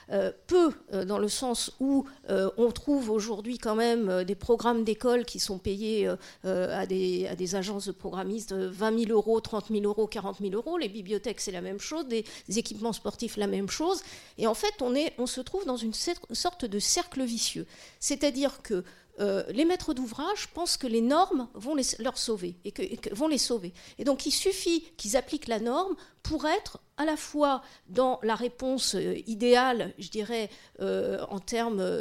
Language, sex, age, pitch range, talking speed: French, female, 50-69, 205-280 Hz, 210 wpm